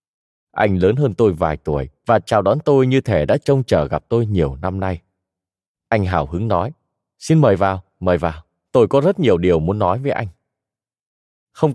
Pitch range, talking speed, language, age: 90-130 Hz, 200 wpm, Vietnamese, 20-39